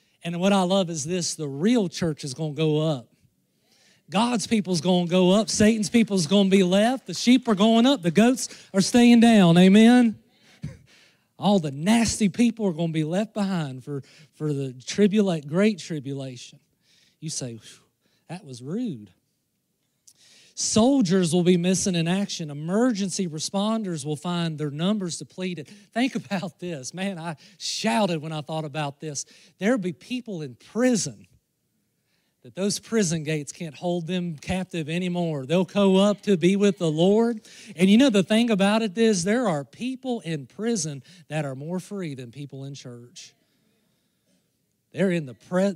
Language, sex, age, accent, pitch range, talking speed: English, male, 40-59, American, 155-210 Hz, 170 wpm